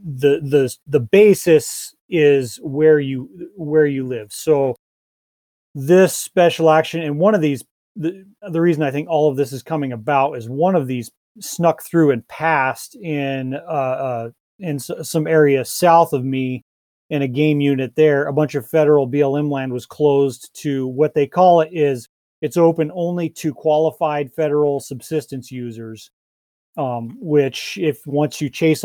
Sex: male